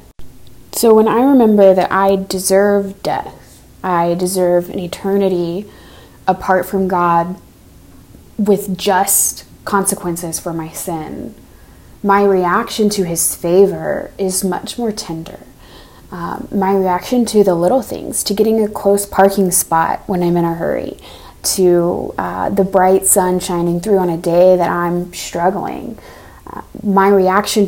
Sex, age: female, 20-39